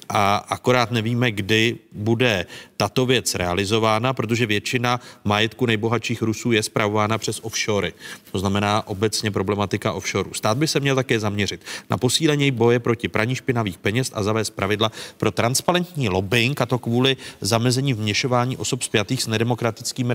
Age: 40-59